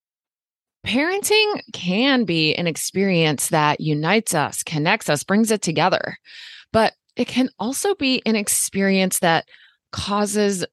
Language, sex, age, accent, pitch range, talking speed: English, female, 20-39, American, 175-235 Hz, 125 wpm